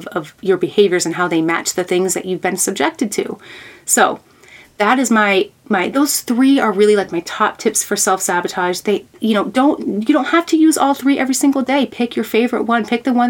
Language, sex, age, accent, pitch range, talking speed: English, female, 30-49, American, 180-225 Hz, 225 wpm